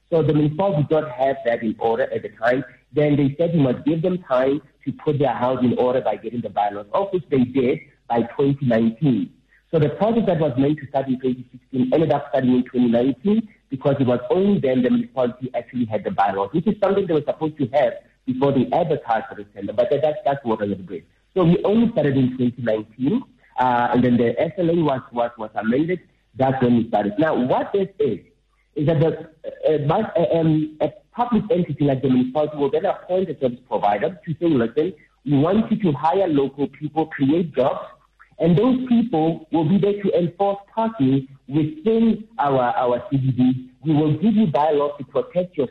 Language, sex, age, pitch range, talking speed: English, male, 50-69, 130-185 Hz, 205 wpm